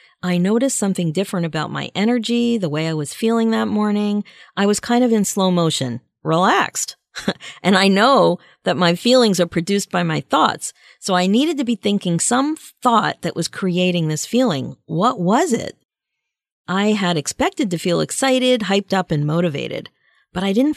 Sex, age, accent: female, 40-59, American